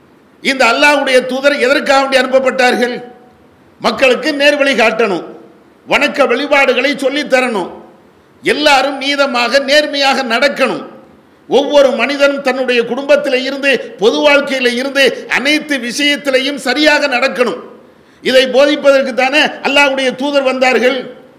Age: 50-69